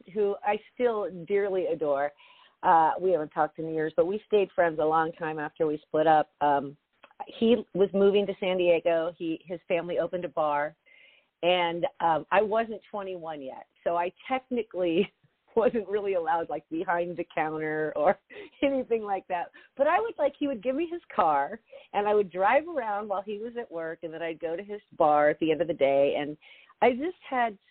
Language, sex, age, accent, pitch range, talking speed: English, female, 40-59, American, 160-230 Hz, 200 wpm